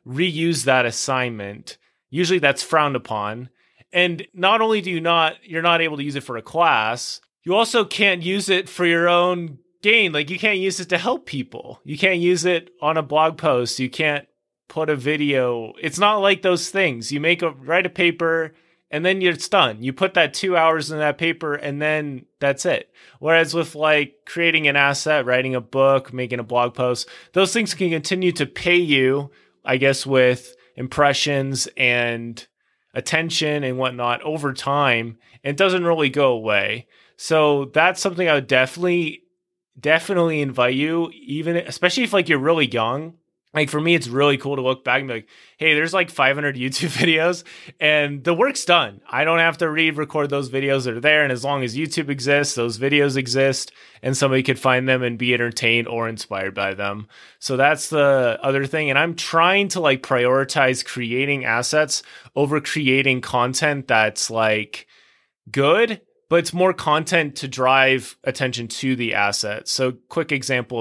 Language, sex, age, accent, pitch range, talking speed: English, male, 20-39, American, 130-170 Hz, 180 wpm